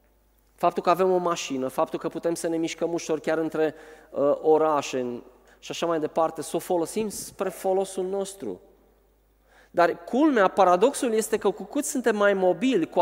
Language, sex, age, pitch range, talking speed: Romanian, male, 20-39, 160-215 Hz, 165 wpm